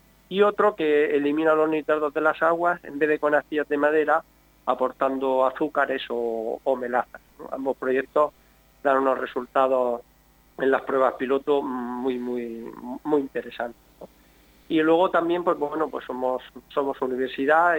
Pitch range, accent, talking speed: 125-145 Hz, Spanish, 150 wpm